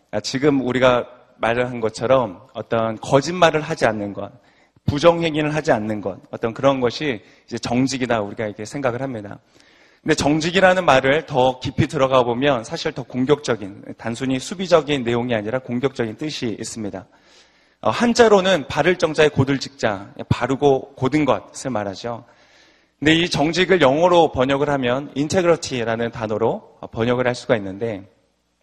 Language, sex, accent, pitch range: Korean, male, native, 115-165 Hz